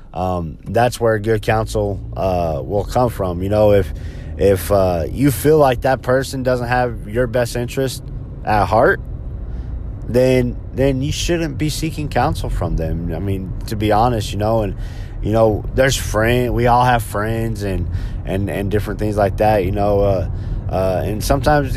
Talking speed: 175 wpm